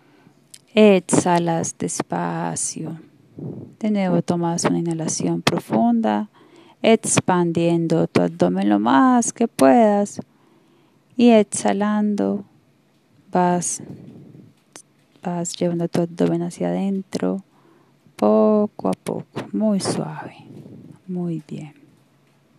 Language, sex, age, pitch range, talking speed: Spanish, female, 30-49, 160-200 Hz, 80 wpm